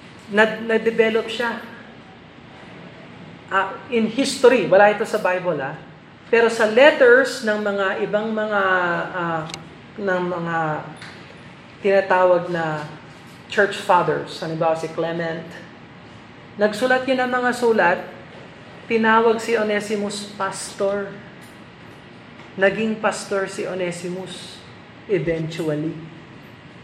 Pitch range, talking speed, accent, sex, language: 170-235 Hz, 95 wpm, native, male, Filipino